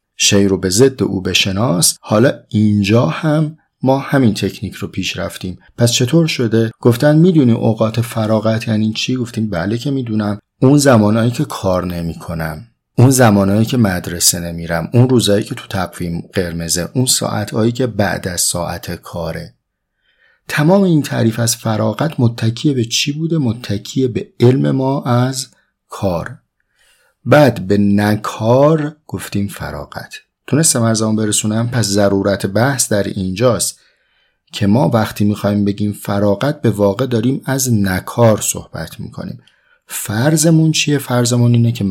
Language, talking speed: Persian, 140 wpm